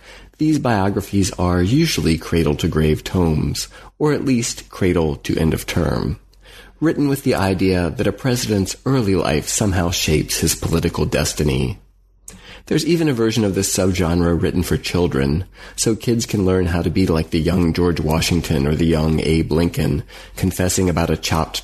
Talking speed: 155 wpm